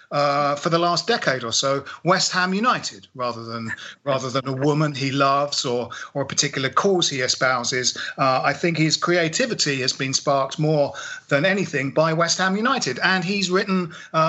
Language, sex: English, male